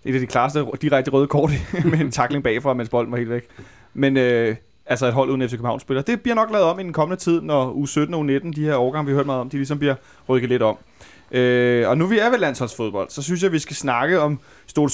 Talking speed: 280 wpm